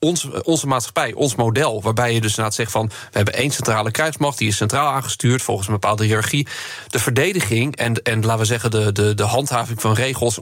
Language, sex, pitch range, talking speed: Dutch, male, 115-135 Hz, 220 wpm